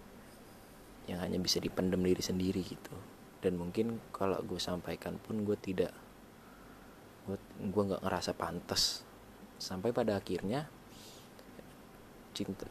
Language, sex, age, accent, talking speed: Indonesian, male, 20-39, native, 110 wpm